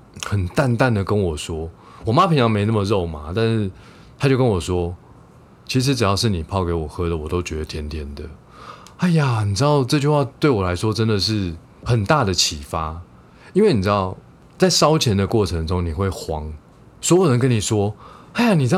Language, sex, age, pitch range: Chinese, male, 20-39, 85-125 Hz